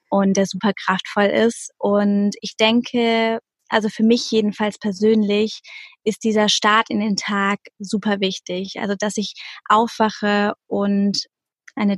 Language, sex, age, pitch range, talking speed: German, female, 20-39, 210-235 Hz, 135 wpm